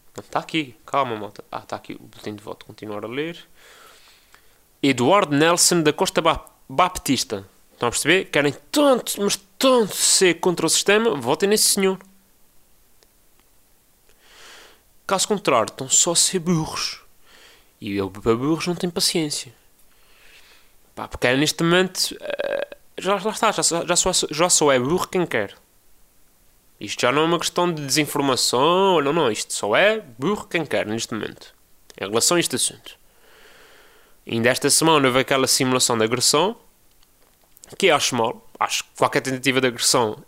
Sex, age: male, 30-49